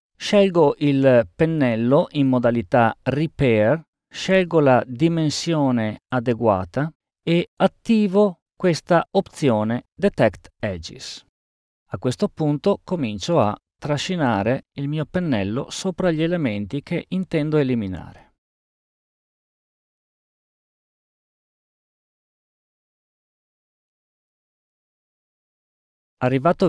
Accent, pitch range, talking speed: native, 125-170 Hz, 70 wpm